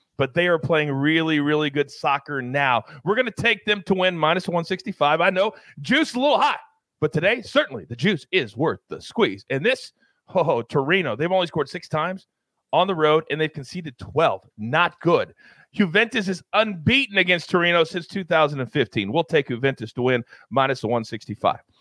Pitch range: 150-210 Hz